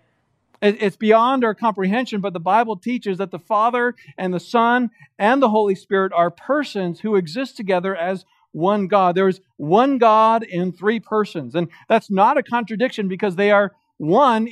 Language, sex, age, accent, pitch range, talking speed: English, male, 50-69, American, 160-225 Hz, 175 wpm